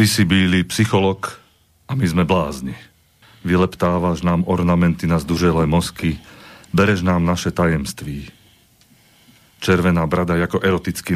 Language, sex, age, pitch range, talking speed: Slovak, male, 40-59, 85-95 Hz, 120 wpm